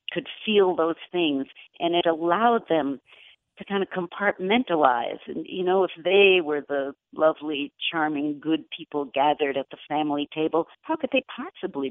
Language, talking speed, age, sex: English, 160 wpm, 60-79, female